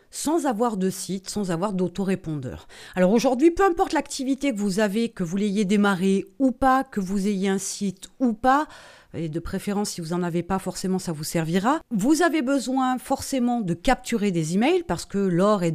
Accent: French